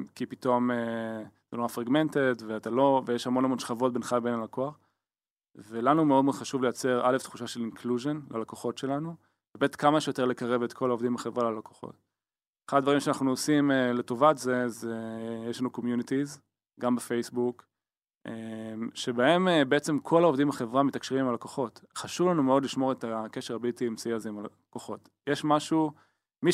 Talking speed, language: 165 wpm, Hebrew